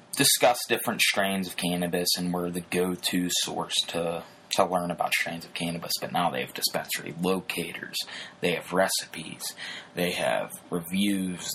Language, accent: English, American